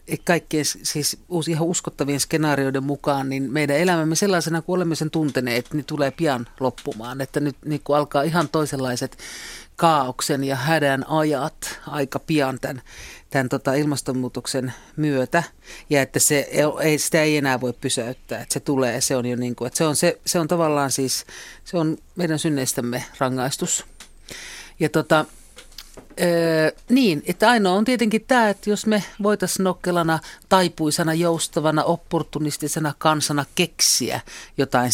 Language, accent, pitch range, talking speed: Finnish, native, 135-165 Hz, 145 wpm